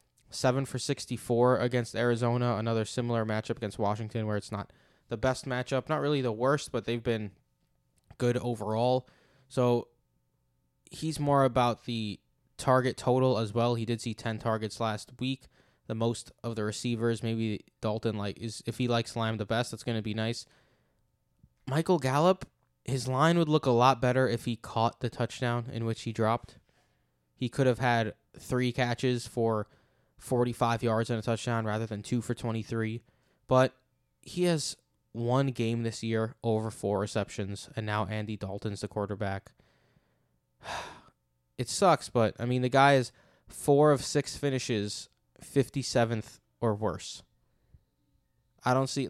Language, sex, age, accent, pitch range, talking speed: English, male, 20-39, American, 110-125 Hz, 155 wpm